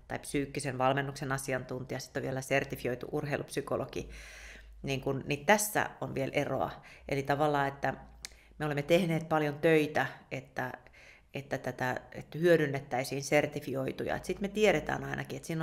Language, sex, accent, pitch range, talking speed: Finnish, female, native, 135-155 Hz, 140 wpm